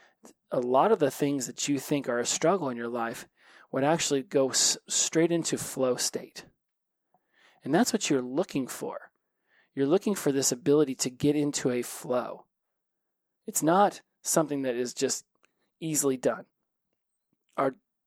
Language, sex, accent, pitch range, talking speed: English, male, American, 130-170 Hz, 155 wpm